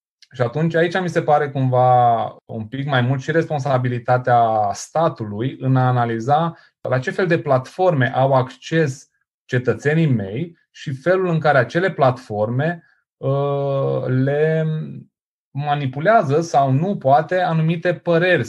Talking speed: 130 wpm